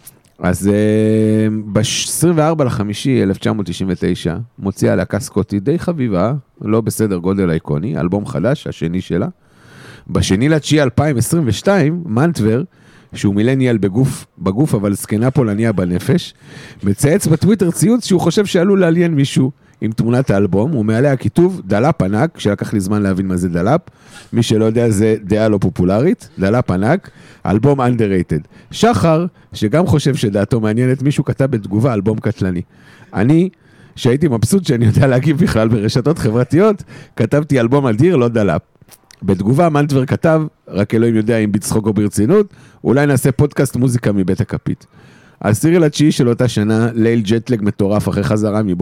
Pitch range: 105-145 Hz